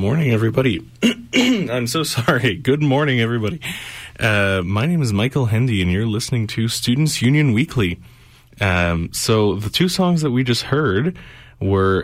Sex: male